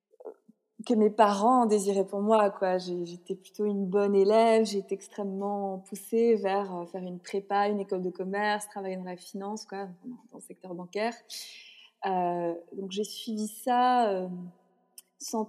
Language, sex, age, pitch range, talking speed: French, female, 20-39, 190-225 Hz, 150 wpm